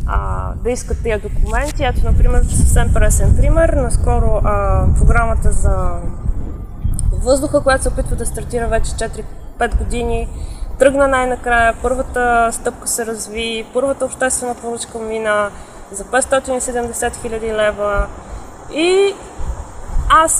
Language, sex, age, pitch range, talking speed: Bulgarian, female, 20-39, 210-260 Hz, 110 wpm